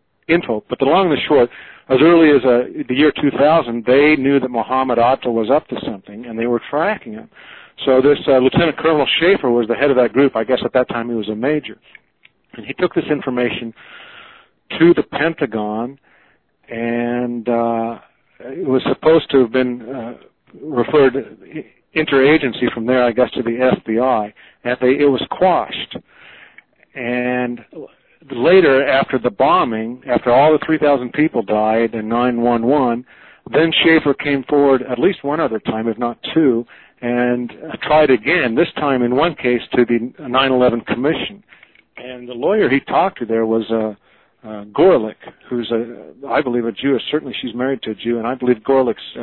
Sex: male